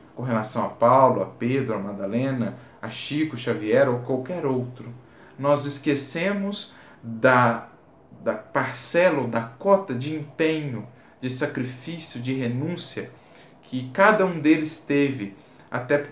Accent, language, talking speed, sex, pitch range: Brazilian, Portuguese, 125 wpm, male, 115-150 Hz